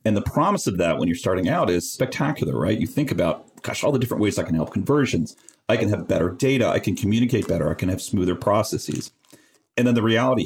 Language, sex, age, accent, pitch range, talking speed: English, male, 40-59, American, 90-125 Hz, 240 wpm